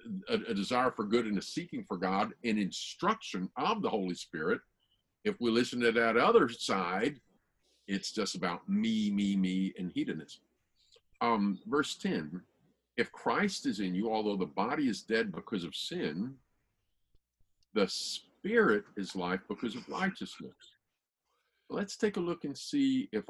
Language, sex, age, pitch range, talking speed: English, male, 50-69, 95-125 Hz, 155 wpm